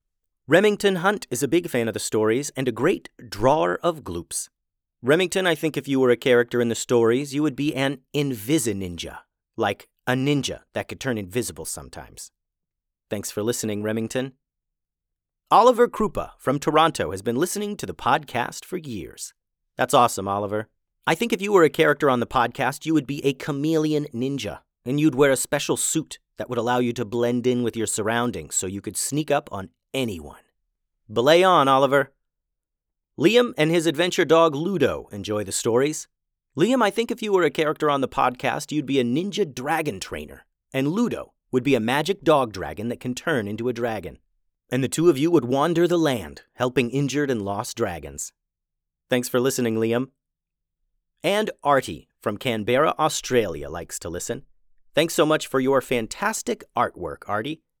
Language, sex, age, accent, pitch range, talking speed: English, male, 30-49, American, 115-155 Hz, 180 wpm